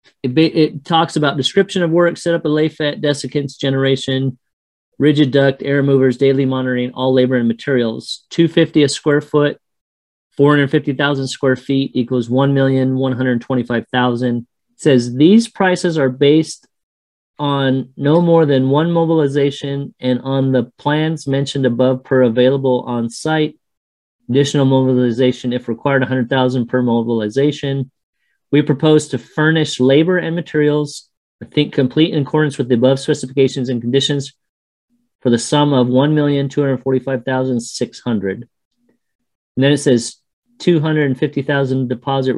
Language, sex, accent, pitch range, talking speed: English, male, American, 125-145 Hz, 130 wpm